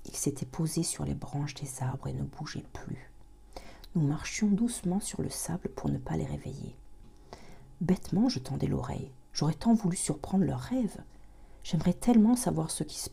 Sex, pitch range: female, 125-190 Hz